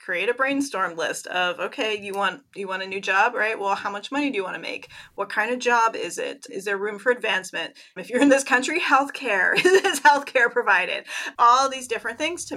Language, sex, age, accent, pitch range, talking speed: English, female, 30-49, American, 200-250 Hz, 230 wpm